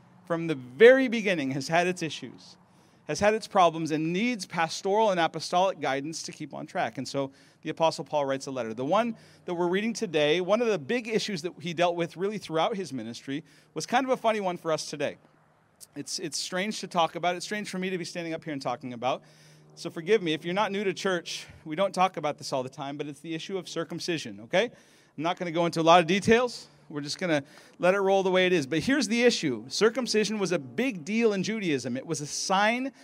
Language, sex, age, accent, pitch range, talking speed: English, male, 40-59, American, 155-205 Hz, 245 wpm